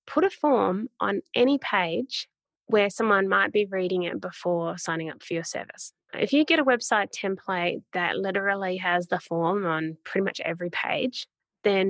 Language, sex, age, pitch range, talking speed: English, female, 20-39, 170-220 Hz, 175 wpm